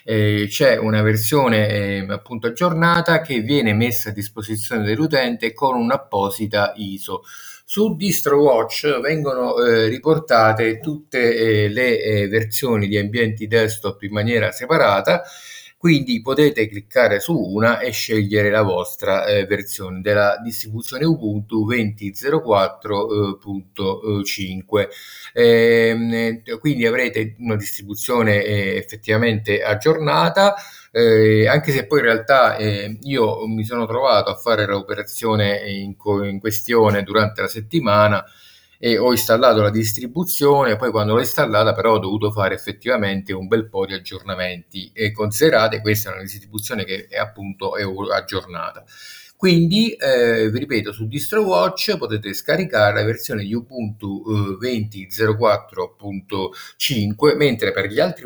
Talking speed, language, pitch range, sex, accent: 125 wpm, Italian, 100-120 Hz, male, native